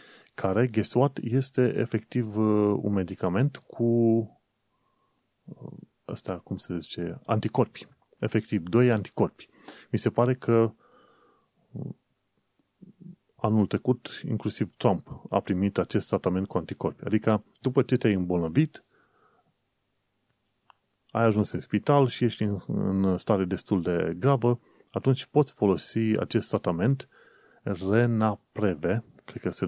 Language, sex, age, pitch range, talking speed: Romanian, male, 30-49, 95-120 Hz, 110 wpm